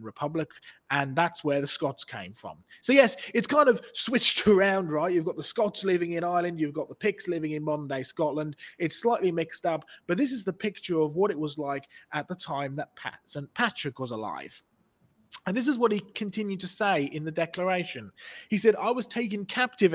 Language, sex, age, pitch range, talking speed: English, male, 30-49, 150-205 Hz, 215 wpm